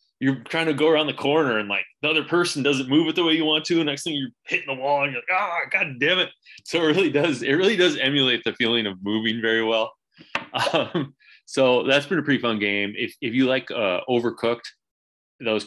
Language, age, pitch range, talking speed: English, 20-39, 100-130 Hz, 240 wpm